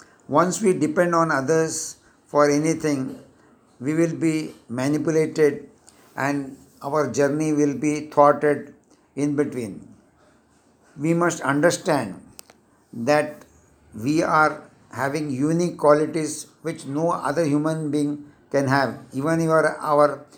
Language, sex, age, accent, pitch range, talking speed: Hindi, male, 60-79, native, 145-165 Hz, 110 wpm